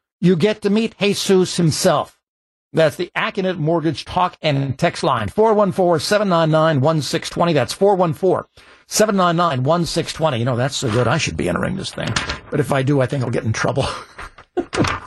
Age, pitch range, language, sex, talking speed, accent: 60-79, 130-170 Hz, English, male, 150 wpm, American